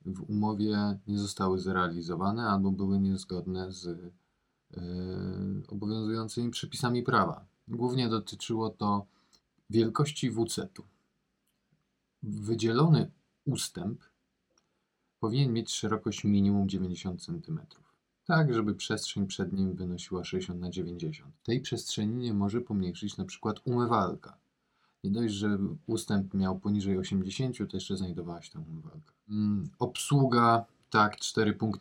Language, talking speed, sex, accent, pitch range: Polish, 110 wpm, male, native, 95-125 Hz